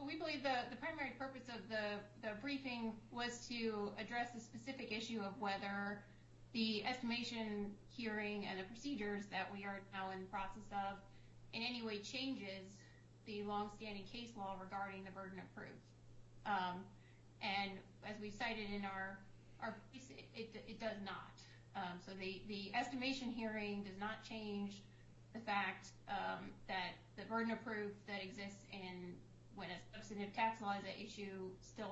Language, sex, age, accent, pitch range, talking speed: English, female, 30-49, American, 190-230 Hz, 165 wpm